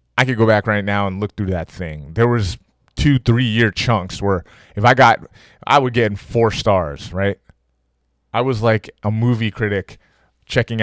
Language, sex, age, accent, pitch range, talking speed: English, male, 20-39, American, 95-120 Hz, 195 wpm